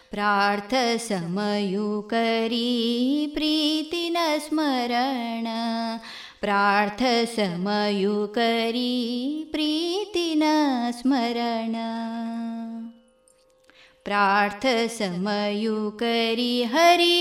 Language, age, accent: Kannada, 20-39, native